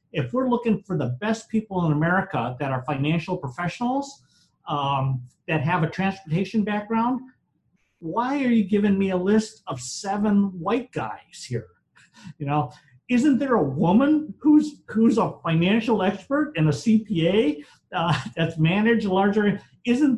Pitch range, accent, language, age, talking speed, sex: 150-225 Hz, American, English, 50-69, 150 wpm, male